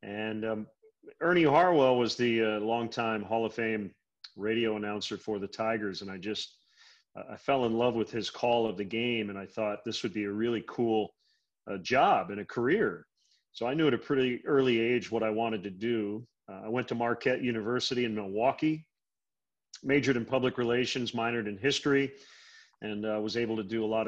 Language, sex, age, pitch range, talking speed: English, male, 40-59, 105-120 Hz, 200 wpm